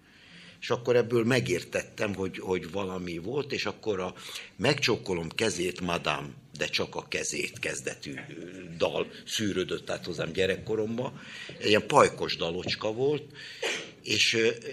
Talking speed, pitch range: 120 wpm, 90-120 Hz